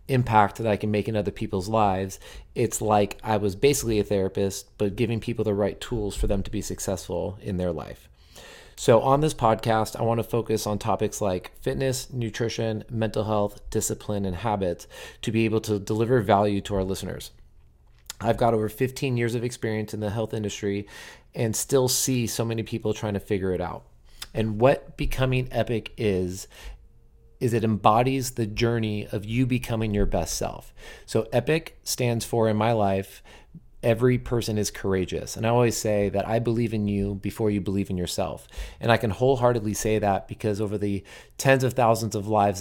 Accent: American